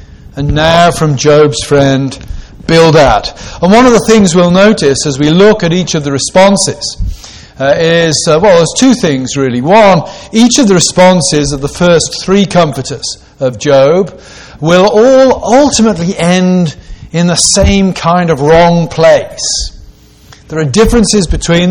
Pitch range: 140-185 Hz